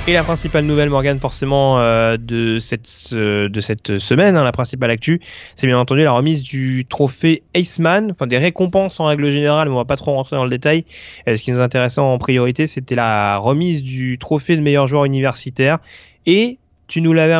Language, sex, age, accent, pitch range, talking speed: French, male, 30-49, French, 125-155 Hz, 205 wpm